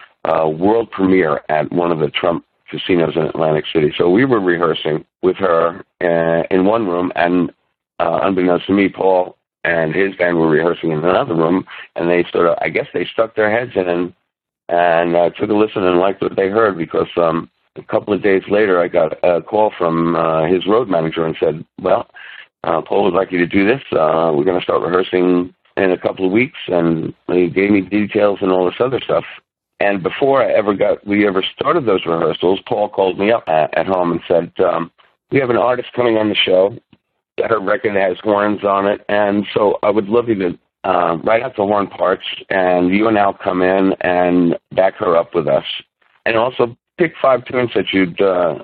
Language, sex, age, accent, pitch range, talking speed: English, male, 60-79, American, 90-105 Hz, 215 wpm